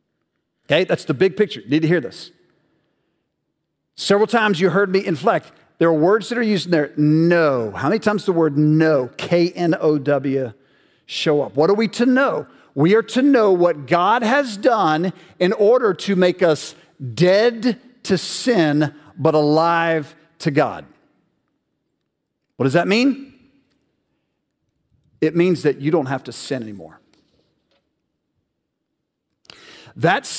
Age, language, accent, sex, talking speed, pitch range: 50-69, English, American, male, 140 wpm, 160-235 Hz